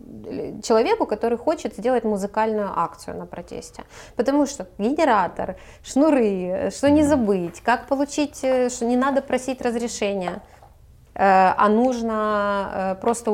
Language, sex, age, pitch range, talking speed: Ukrainian, female, 20-39, 195-255 Hz, 115 wpm